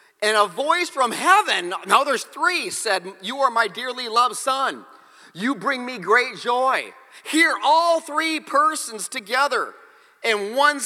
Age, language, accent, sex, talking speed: 40-59, English, American, male, 150 wpm